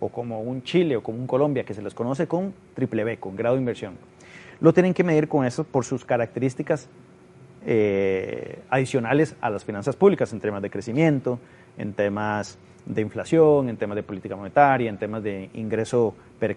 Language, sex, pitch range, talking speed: Spanish, male, 115-145 Hz, 190 wpm